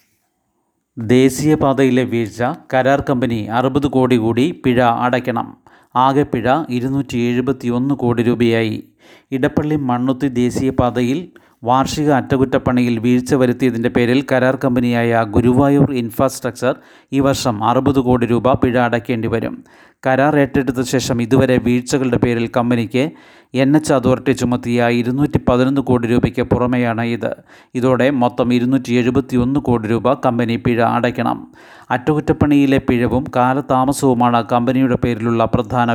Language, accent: Malayalam, native